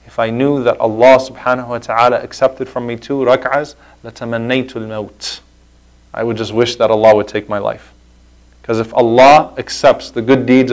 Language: English